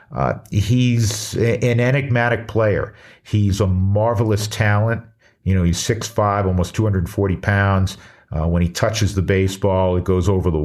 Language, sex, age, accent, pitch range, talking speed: English, male, 50-69, American, 85-105 Hz, 145 wpm